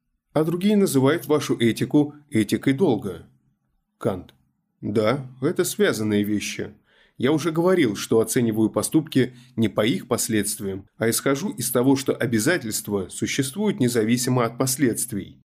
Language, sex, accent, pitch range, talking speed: Russian, male, native, 110-145 Hz, 125 wpm